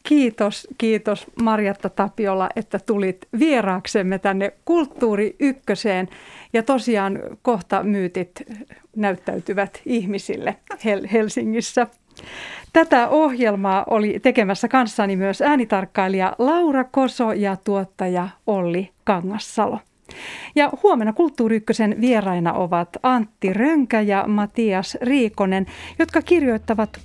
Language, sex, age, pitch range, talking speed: Finnish, female, 40-59, 195-245 Hz, 90 wpm